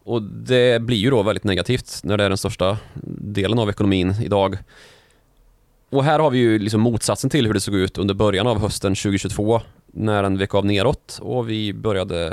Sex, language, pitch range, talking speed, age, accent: male, Swedish, 100-125 Hz, 200 wpm, 20-39, native